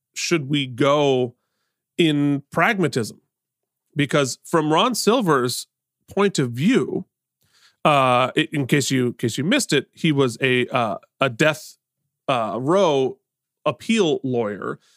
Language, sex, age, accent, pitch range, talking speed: English, male, 30-49, American, 135-170 Hz, 125 wpm